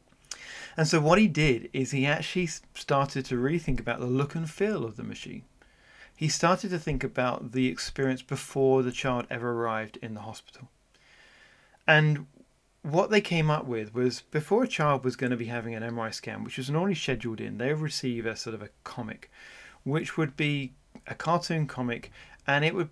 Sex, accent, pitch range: male, British, 125-160 Hz